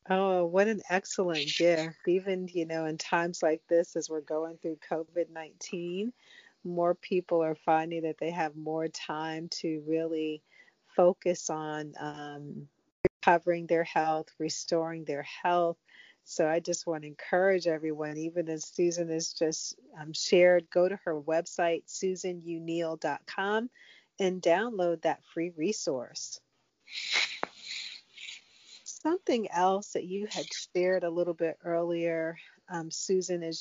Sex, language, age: female, English, 40-59